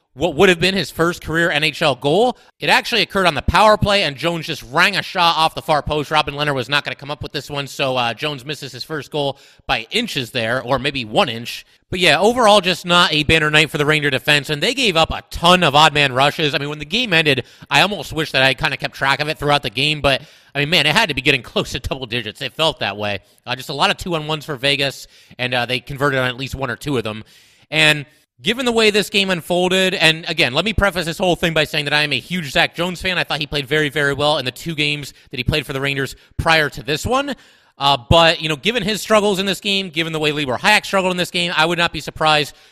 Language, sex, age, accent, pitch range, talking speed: English, male, 30-49, American, 140-180 Hz, 280 wpm